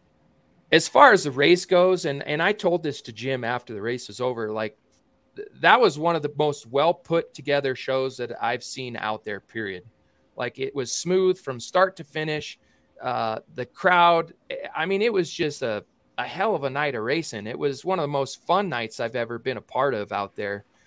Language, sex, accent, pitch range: English, male, American, 120-165 Hz